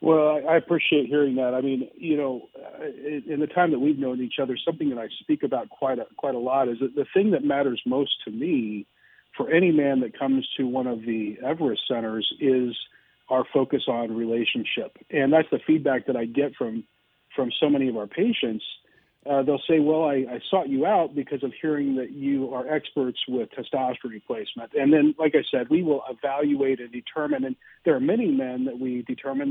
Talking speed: 210 wpm